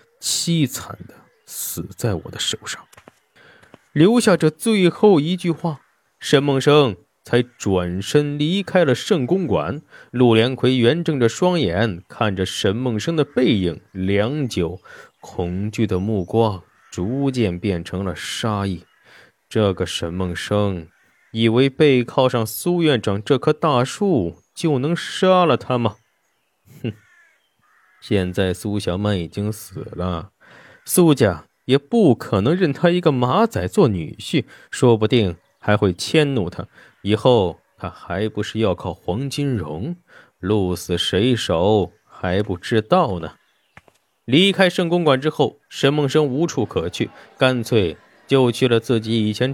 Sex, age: male, 20-39